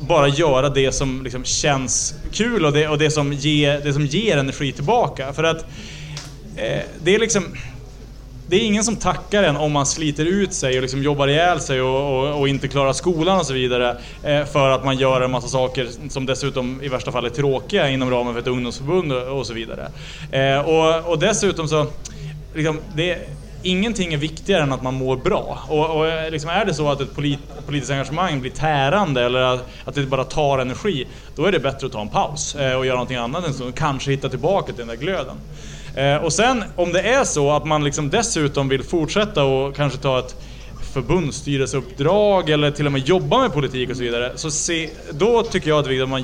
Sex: male